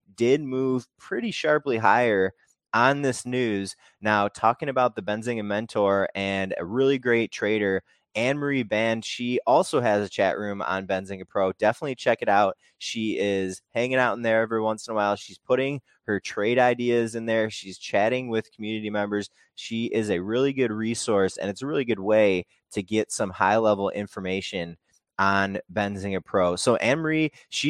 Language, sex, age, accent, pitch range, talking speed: English, male, 20-39, American, 100-120 Hz, 180 wpm